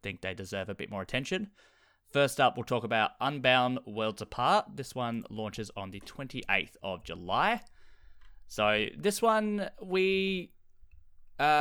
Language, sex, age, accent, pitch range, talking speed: English, male, 20-39, Australian, 100-145 Hz, 145 wpm